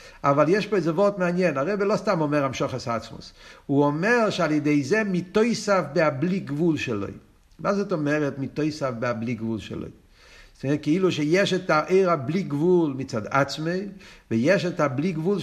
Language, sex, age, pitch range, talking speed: Hebrew, male, 50-69, 165-225 Hz, 185 wpm